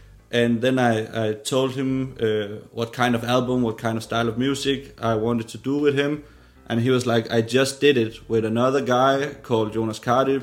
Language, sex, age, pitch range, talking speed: Danish, male, 30-49, 115-130 Hz, 215 wpm